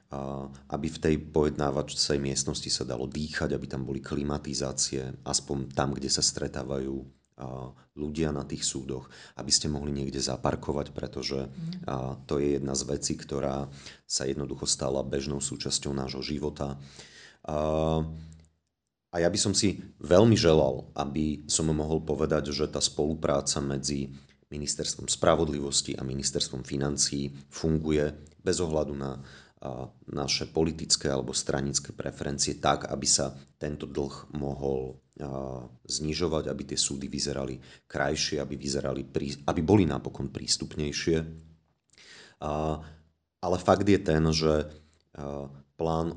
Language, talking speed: Slovak, 120 wpm